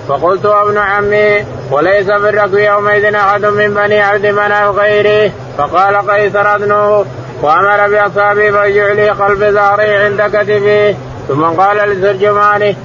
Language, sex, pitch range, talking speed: Arabic, male, 200-205 Hz, 130 wpm